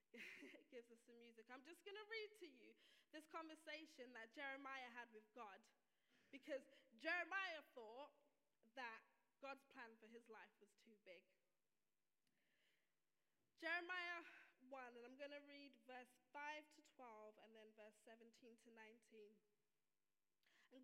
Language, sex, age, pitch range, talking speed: English, female, 20-39, 245-365 Hz, 140 wpm